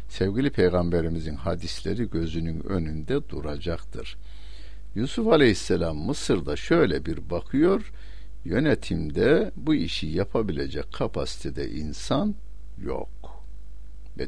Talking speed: 85 wpm